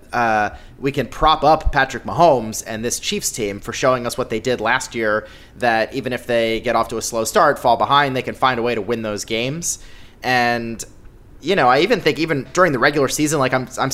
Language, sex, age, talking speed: English, male, 20-39, 235 wpm